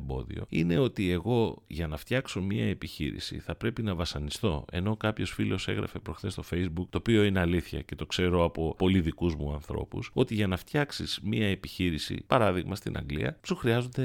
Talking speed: 180 wpm